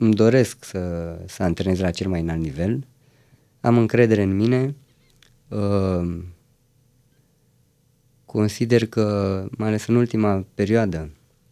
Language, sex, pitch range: Romanian, female, 100-125 Hz